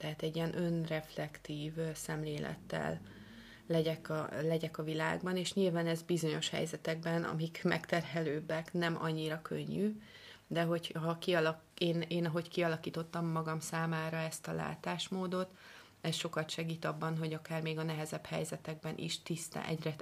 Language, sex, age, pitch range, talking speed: Hungarian, female, 30-49, 155-170 Hz, 140 wpm